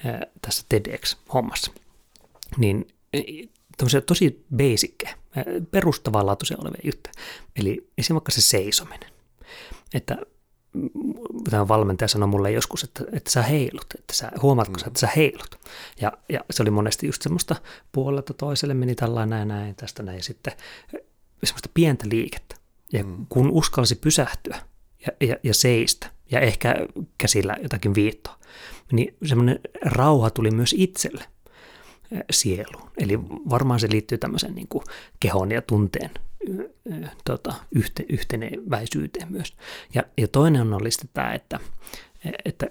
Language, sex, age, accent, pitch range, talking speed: Finnish, male, 30-49, native, 110-150 Hz, 130 wpm